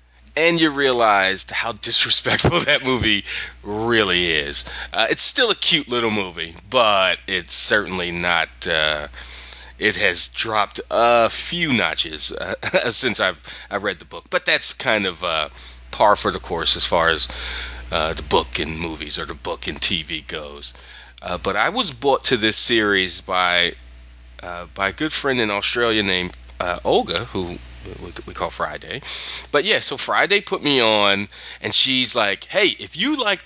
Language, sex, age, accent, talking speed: English, male, 30-49, American, 170 wpm